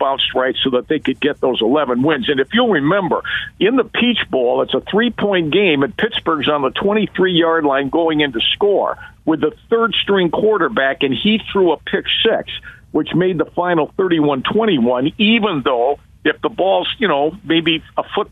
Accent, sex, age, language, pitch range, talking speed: American, male, 50-69, English, 150-195 Hz, 185 wpm